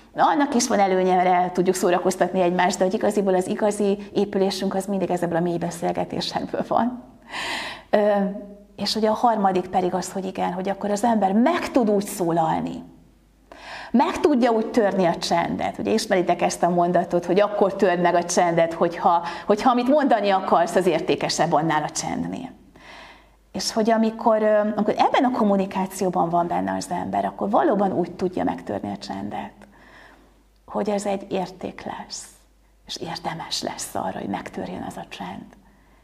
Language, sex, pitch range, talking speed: Hungarian, female, 185-225 Hz, 160 wpm